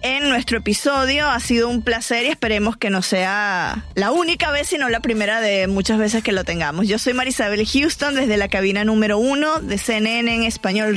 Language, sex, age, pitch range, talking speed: Spanish, female, 20-39, 205-250 Hz, 200 wpm